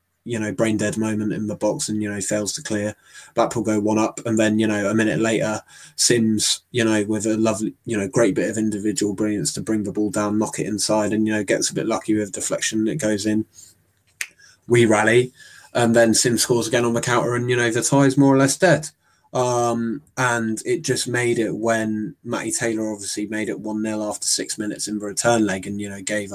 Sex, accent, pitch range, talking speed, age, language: male, British, 105-115 Hz, 235 wpm, 20-39, English